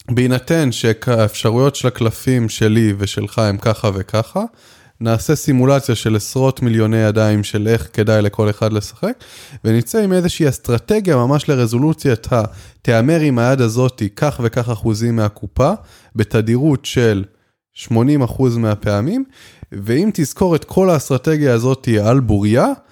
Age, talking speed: 20-39, 125 wpm